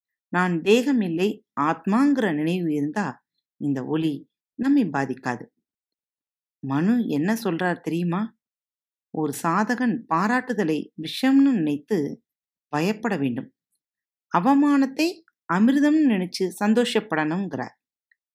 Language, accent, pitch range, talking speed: Tamil, native, 160-235 Hz, 80 wpm